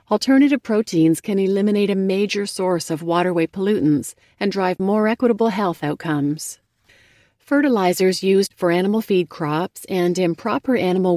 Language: English